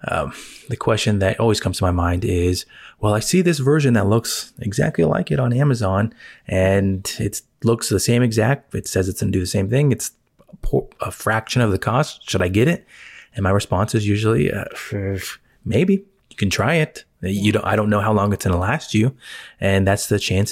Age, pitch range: 20-39, 95-115 Hz